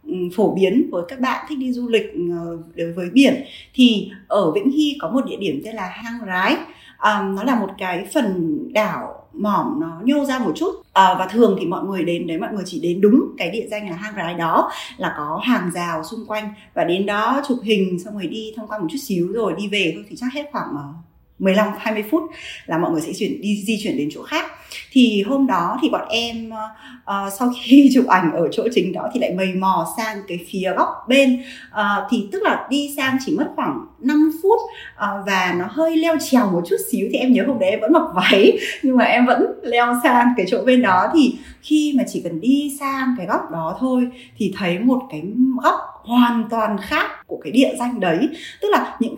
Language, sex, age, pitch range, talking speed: Vietnamese, female, 20-39, 195-280 Hz, 230 wpm